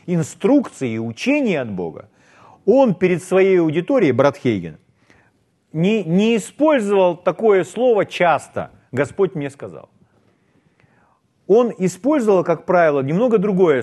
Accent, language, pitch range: native, Russian, 125-185 Hz